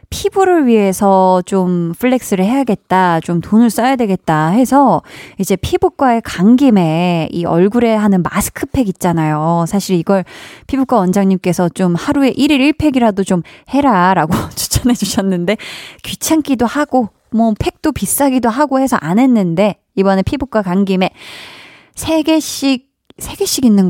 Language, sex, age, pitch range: Korean, female, 20-39, 180-275 Hz